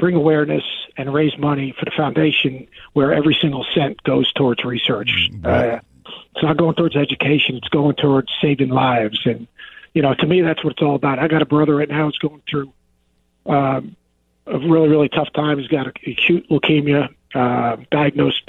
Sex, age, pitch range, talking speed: male, 50-69, 130-160 Hz, 185 wpm